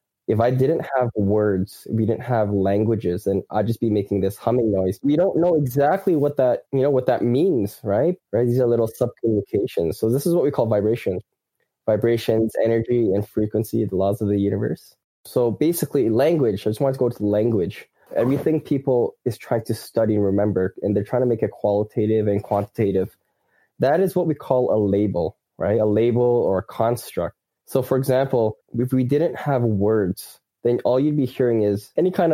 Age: 10-29